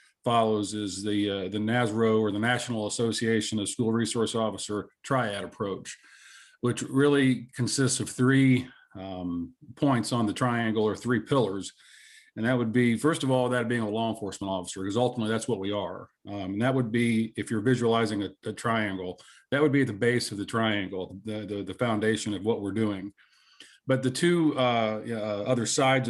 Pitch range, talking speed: 105-125 Hz, 190 wpm